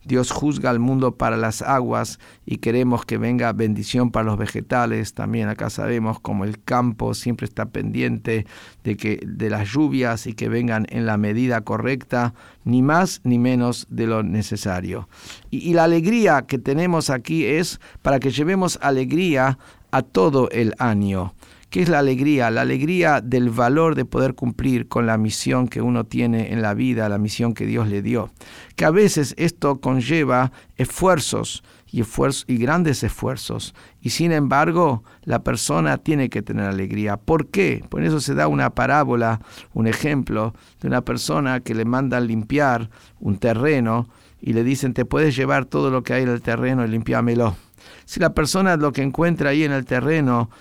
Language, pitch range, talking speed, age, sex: Spanish, 110-140 Hz, 175 wpm, 50-69, male